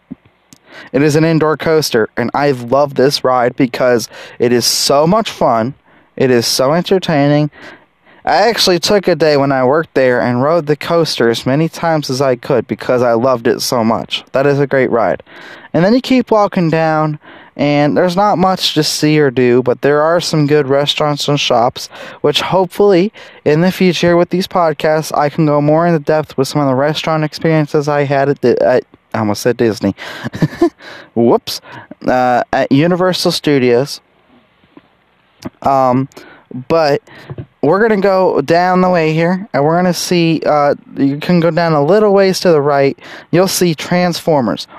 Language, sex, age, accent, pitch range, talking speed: English, male, 20-39, American, 135-175 Hz, 180 wpm